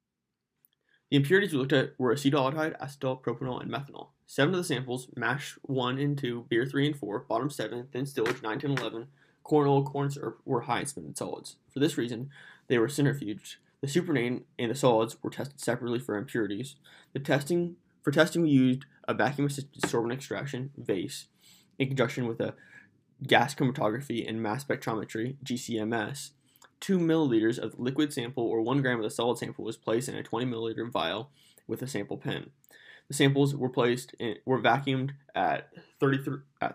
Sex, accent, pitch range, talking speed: male, American, 115-140 Hz, 175 wpm